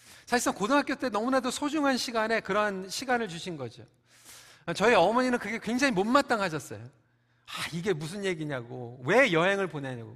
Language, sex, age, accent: Korean, male, 40-59, native